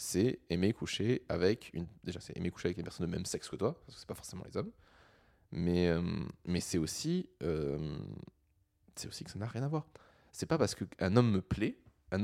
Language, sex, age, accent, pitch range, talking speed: French, male, 20-39, French, 90-115 Hz, 235 wpm